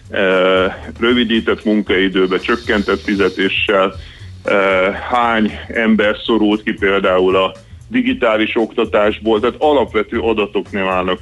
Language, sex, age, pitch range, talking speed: Hungarian, male, 30-49, 95-110 Hz, 90 wpm